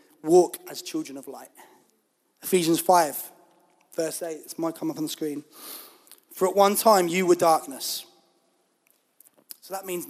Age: 20-39